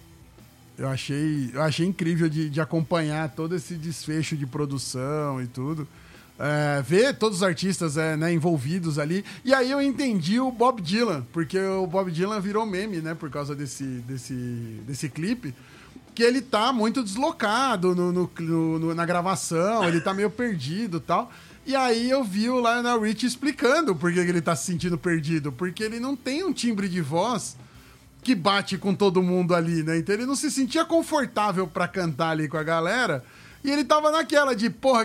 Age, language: 20-39, Portuguese